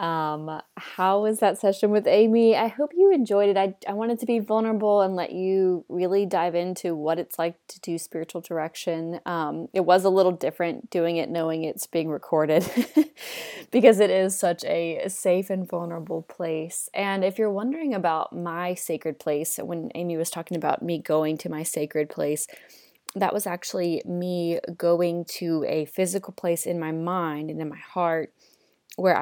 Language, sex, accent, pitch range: English, female, American, 160-185 Hz